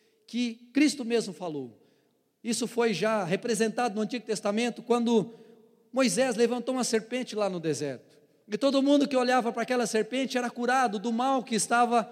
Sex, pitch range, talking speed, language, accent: male, 165-255 Hz, 165 wpm, Portuguese, Brazilian